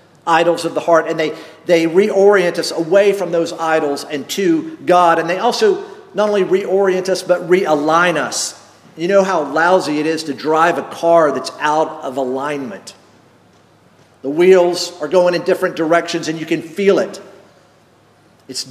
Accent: American